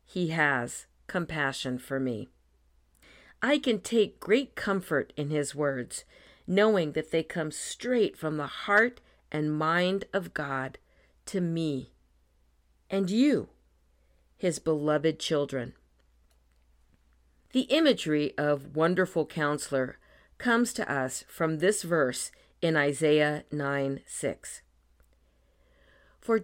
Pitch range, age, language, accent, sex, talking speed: 115-185 Hz, 50-69, English, American, female, 110 wpm